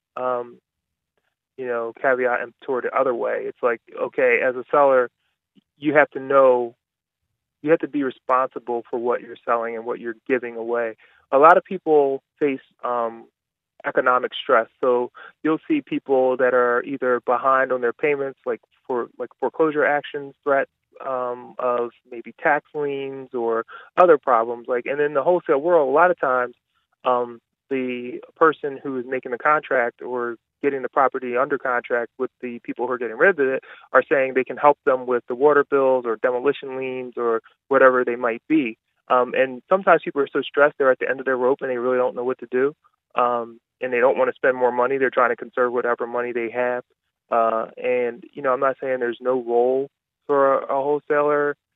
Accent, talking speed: American, 195 wpm